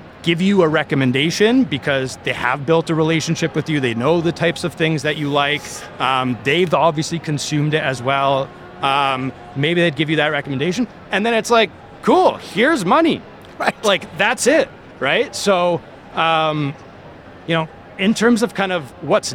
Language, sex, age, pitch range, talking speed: English, male, 30-49, 130-165 Hz, 175 wpm